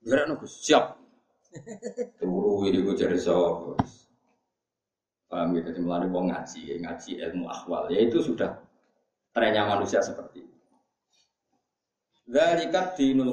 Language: Indonesian